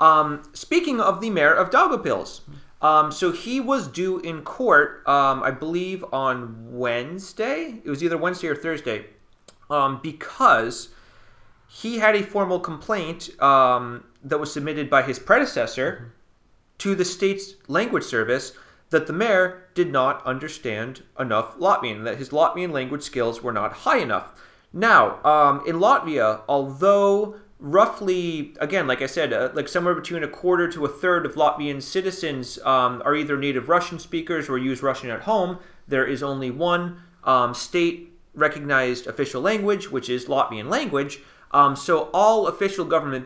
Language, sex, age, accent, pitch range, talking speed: English, male, 30-49, American, 135-180 Hz, 155 wpm